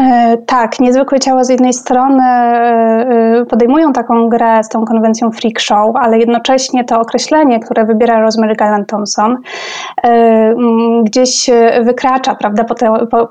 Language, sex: Polish, female